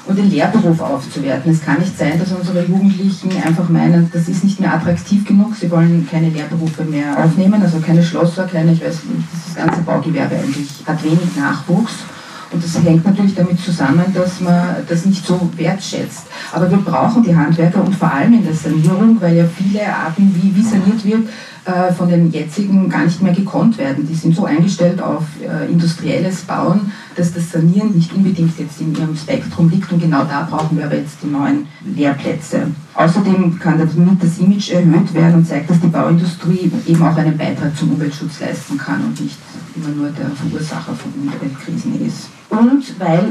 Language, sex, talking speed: German, female, 190 wpm